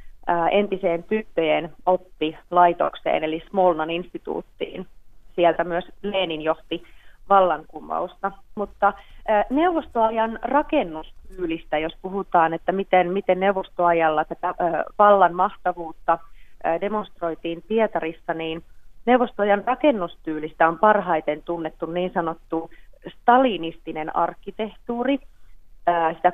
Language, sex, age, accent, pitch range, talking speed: Finnish, female, 30-49, native, 165-200 Hz, 80 wpm